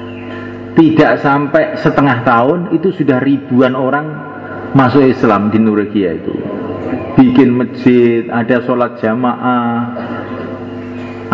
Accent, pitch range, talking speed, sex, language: native, 105-145 Hz, 100 wpm, male, Indonesian